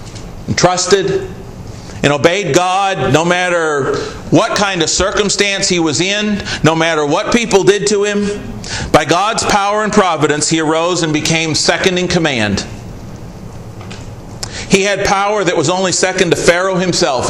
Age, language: 40-59, English